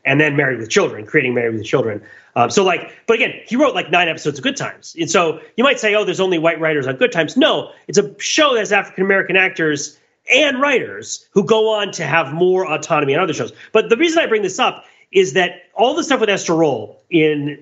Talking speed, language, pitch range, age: 240 wpm, English, 150-215 Hz, 30-49